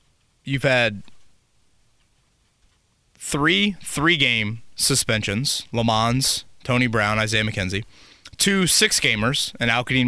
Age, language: 20-39, English